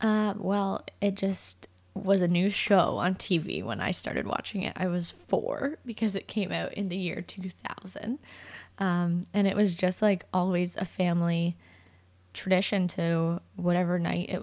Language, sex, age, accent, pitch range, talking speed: English, female, 20-39, American, 170-200 Hz, 165 wpm